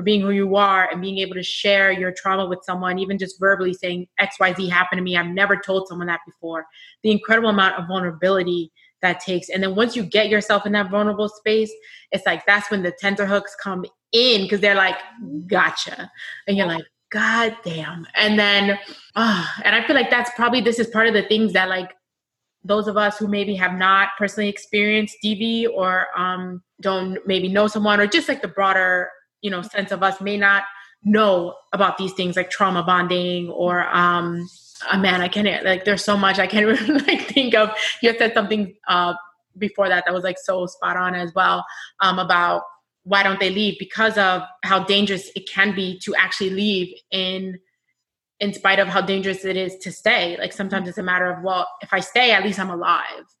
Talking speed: 210 wpm